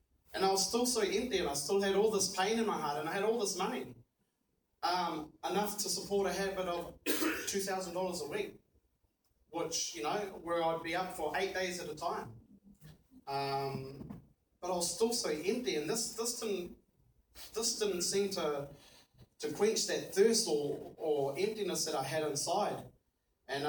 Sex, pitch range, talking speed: male, 140-185 Hz, 180 wpm